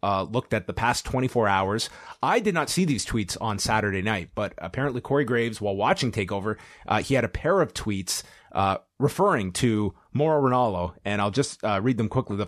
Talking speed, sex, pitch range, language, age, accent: 205 wpm, male, 105-135 Hz, English, 30-49, American